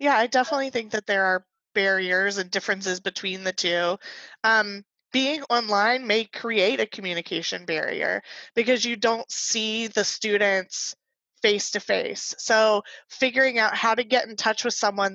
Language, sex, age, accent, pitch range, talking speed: English, female, 20-39, American, 195-235 Hz, 150 wpm